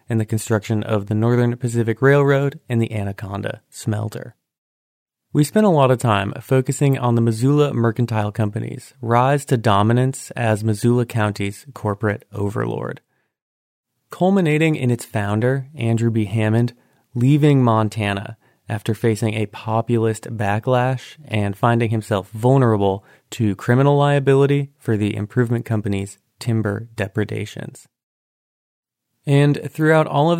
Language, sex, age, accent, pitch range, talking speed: English, male, 30-49, American, 110-130 Hz, 125 wpm